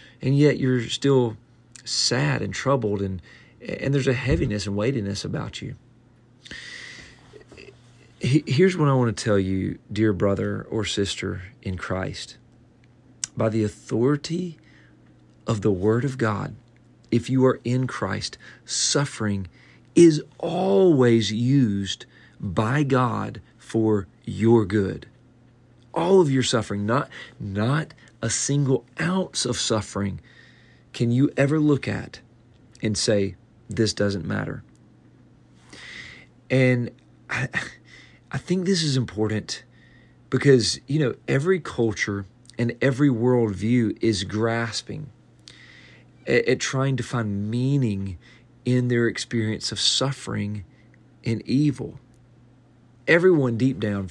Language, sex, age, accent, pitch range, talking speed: English, male, 40-59, American, 105-130 Hz, 115 wpm